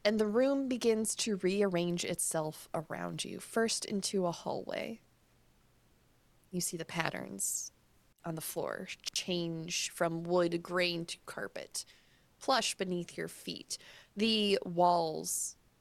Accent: American